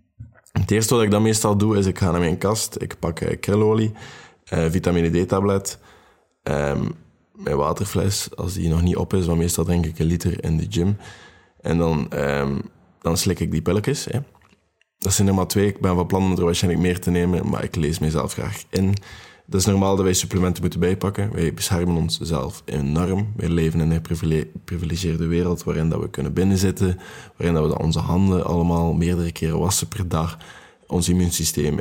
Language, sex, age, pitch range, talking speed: Dutch, male, 20-39, 85-100 Hz, 185 wpm